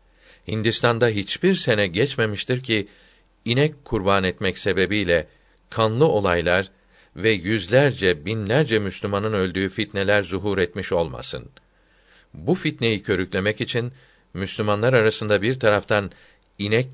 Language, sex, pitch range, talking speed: Turkish, male, 95-125 Hz, 105 wpm